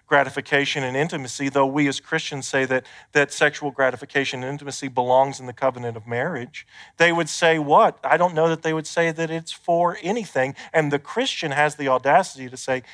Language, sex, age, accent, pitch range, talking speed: English, male, 40-59, American, 110-150 Hz, 200 wpm